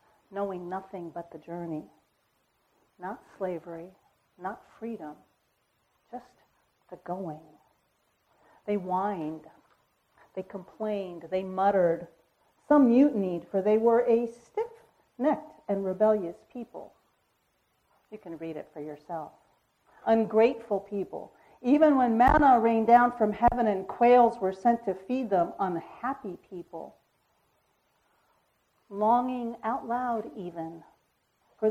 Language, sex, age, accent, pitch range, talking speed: English, female, 50-69, American, 175-235 Hz, 110 wpm